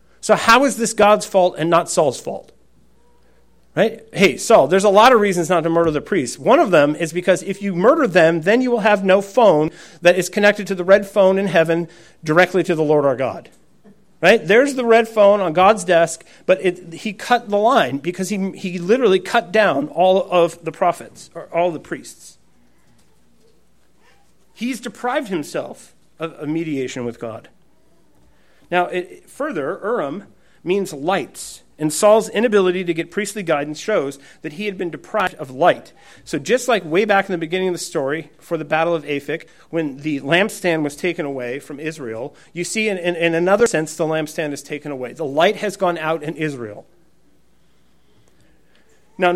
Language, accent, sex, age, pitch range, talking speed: English, American, male, 40-59, 160-200 Hz, 185 wpm